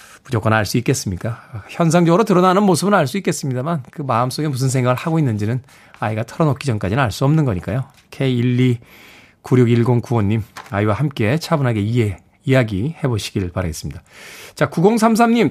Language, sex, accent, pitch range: Korean, male, native, 125-185 Hz